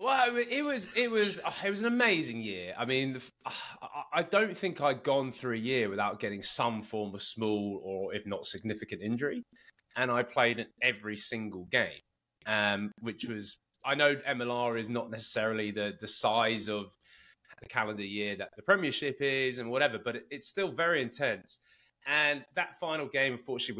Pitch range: 105-135 Hz